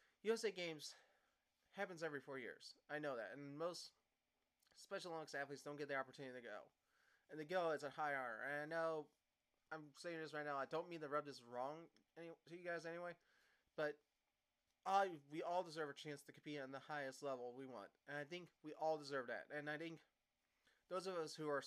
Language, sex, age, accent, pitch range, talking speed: English, male, 30-49, American, 140-170 Hz, 215 wpm